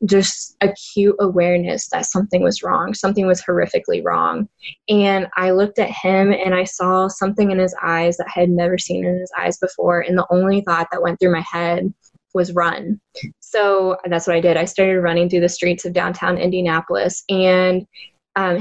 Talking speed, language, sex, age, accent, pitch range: 190 wpm, English, female, 10-29, American, 170-195 Hz